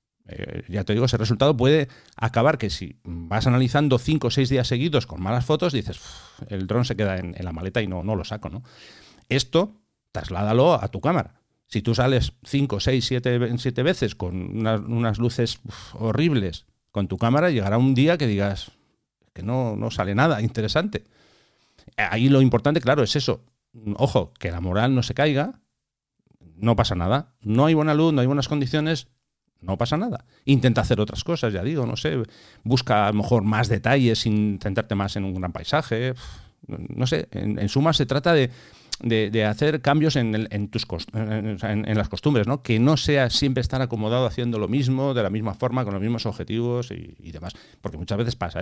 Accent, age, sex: Spanish, 50-69, male